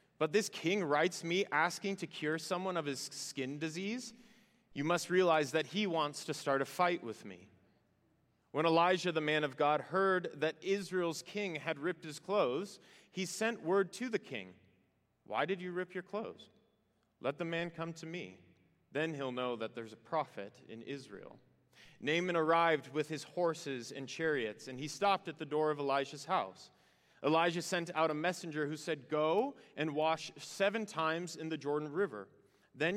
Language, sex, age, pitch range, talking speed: English, male, 30-49, 150-190 Hz, 180 wpm